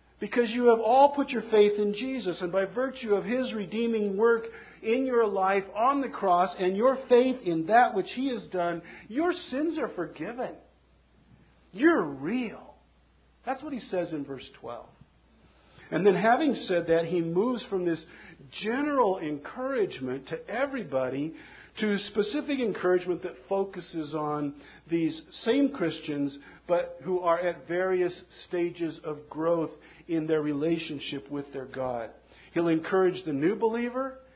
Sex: male